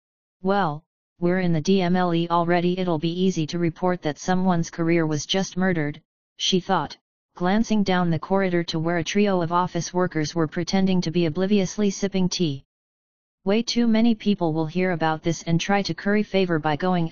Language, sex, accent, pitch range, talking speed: English, female, American, 160-195 Hz, 180 wpm